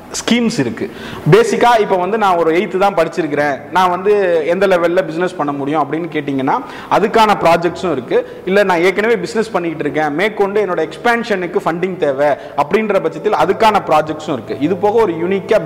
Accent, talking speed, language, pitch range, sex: native, 155 wpm, Tamil, 155-210 Hz, male